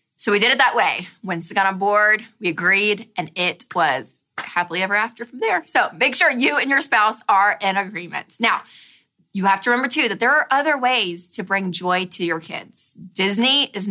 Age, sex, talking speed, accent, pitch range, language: 20-39, female, 210 wpm, American, 185-245 Hz, English